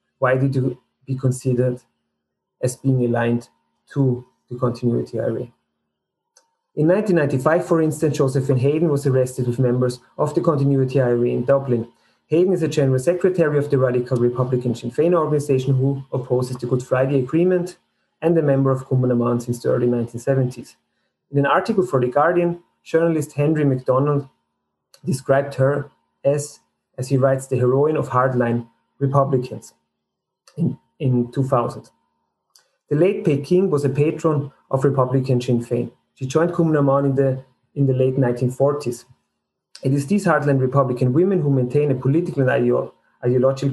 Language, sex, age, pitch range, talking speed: English, male, 30-49, 125-145 Hz, 150 wpm